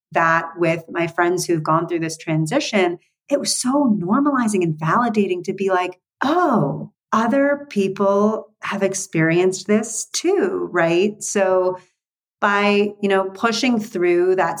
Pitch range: 165-200 Hz